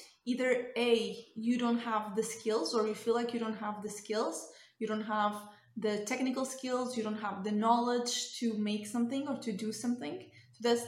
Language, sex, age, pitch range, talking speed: English, female, 20-39, 215-235 Hz, 195 wpm